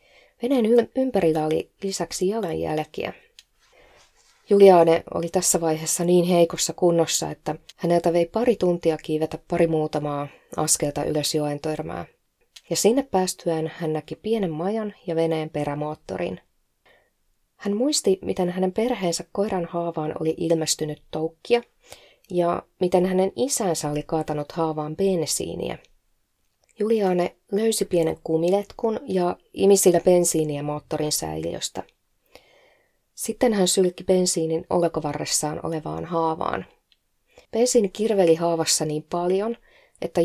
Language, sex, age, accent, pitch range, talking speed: Finnish, female, 20-39, native, 155-195 Hz, 110 wpm